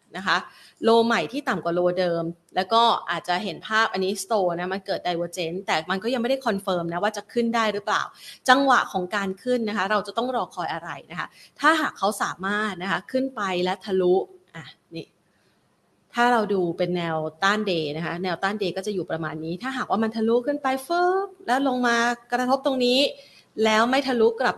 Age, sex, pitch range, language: 30-49, female, 185-245 Hz, Thai